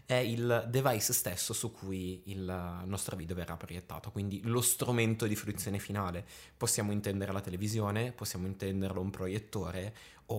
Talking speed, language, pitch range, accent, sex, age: 150 wpm, Italian, 100-120 Hz, native, male, 20-39